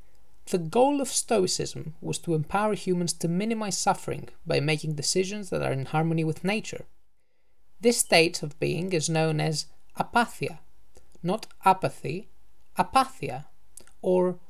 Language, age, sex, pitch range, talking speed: English, 20-39, male, 155-200 Hz, 135 wpm